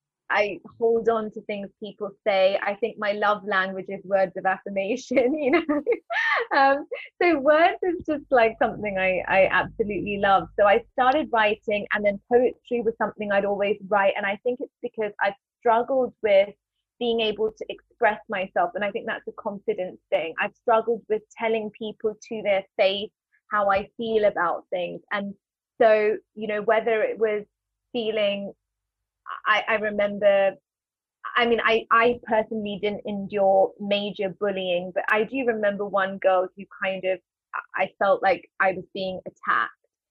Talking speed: 165 wpm